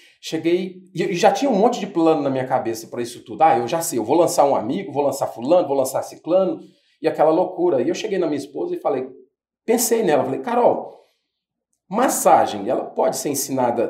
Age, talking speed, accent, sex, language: 40-59, 210 wpm, Brazilian, male, Portuguese